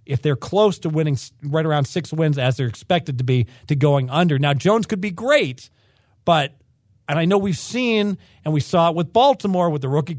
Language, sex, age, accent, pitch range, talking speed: English, male, 40-59, American, 130-165 Hz, 220 wpm